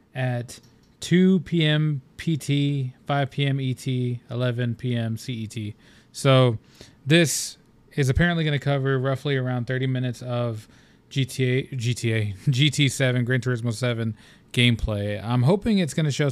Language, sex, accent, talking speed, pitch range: English, male, American, 130 wpm, 115-135 Hz